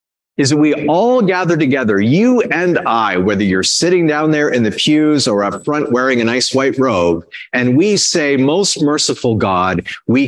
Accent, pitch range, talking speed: American, 110-175 Hz, 185 wpm